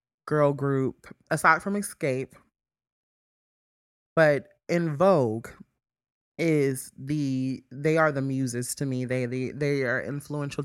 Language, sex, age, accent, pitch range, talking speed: English, male, 20-39, American, 130-155 Hz, 120 wpm